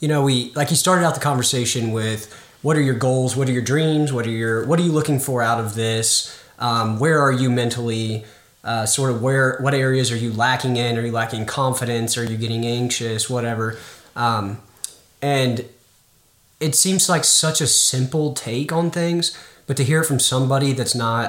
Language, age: English, 20-39